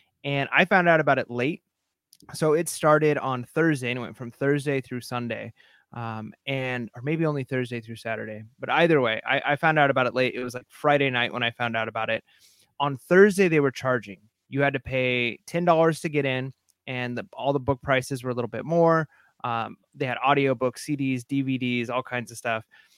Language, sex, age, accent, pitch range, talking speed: English, male, 30-49, American, 120-145 Hz, 210 wpm